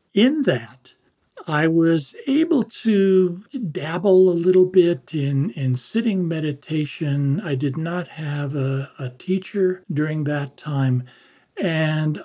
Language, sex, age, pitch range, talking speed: English, male, 60-79, 130-165 Hz, 120 wpm